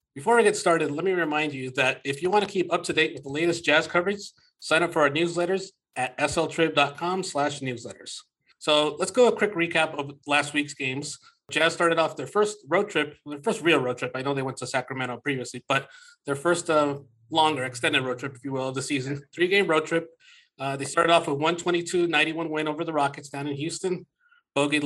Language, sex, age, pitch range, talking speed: English, male, 30-49, 140-170 Hz, 215 wpm